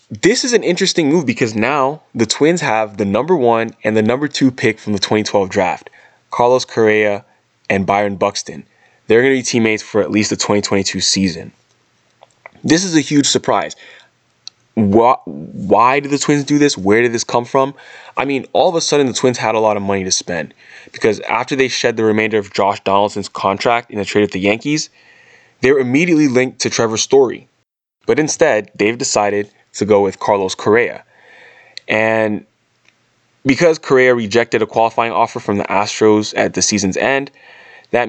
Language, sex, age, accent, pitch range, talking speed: English, male, 20-39, American, 100-130 Hz, 185 wpm